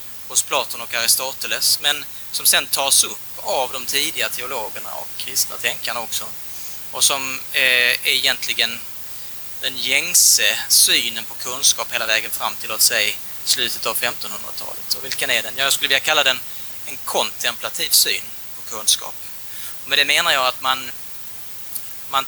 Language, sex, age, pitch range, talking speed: Swedish, male, 30-49, 100-130 Hz, 150 wpm